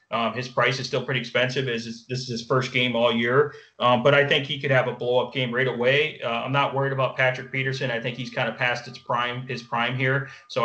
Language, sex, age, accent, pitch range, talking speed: English, male, 30-49, American, 120-135 Hz, 265 wpm